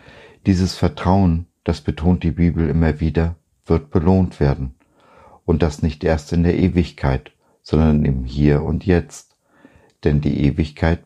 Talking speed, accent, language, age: 140 wpm, German, German, 50-69